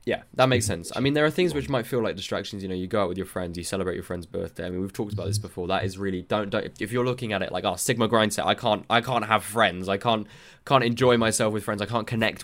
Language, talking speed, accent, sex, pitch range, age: English, 315 wpm, British, male, 95-120 Hz, 10-29